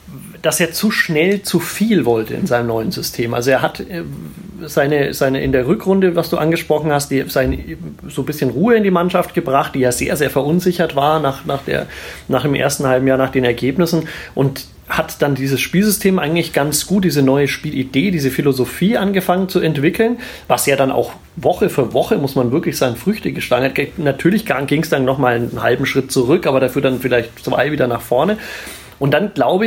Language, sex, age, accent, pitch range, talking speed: German, male, 30-49, German, 140-180 Hz, 205 wpm